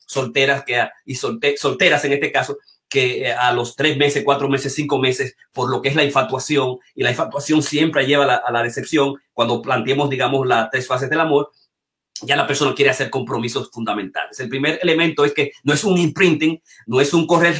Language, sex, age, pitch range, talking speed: Spanish, male, 30-49, 135-170 Hz, 210 wpm